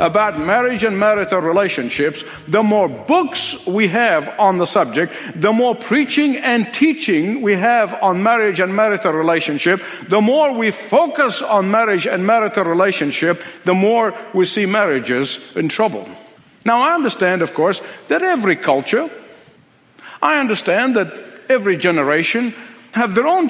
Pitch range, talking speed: 200-275 Hz, 145 wpm